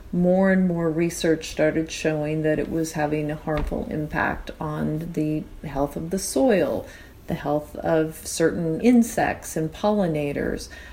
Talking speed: 145 wpm